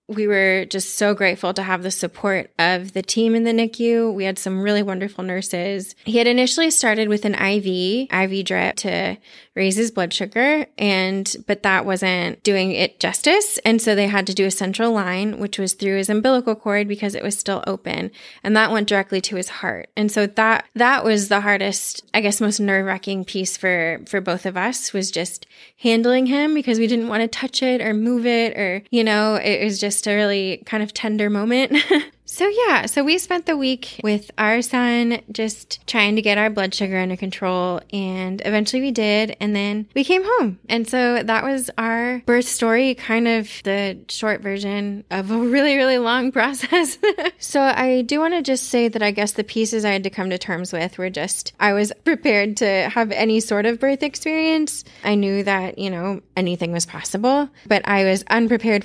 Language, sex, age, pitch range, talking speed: English, female, 20-39, 195-235 Hz, 205 wpm